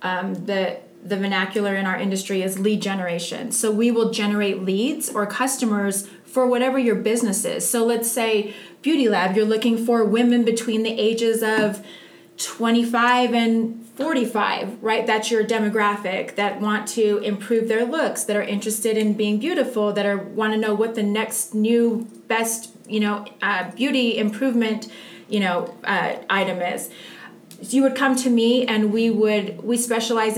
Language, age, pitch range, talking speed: English, 30-49, 205-230 Hz, 165 wpm